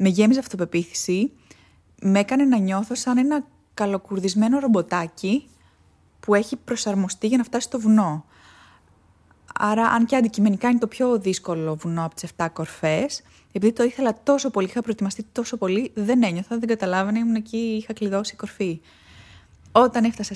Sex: female